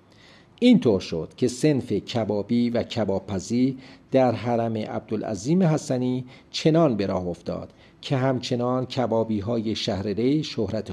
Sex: male